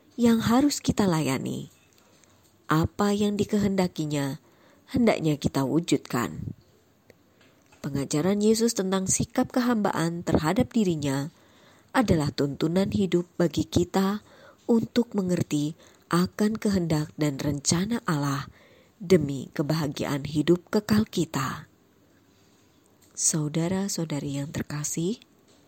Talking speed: 85 wpm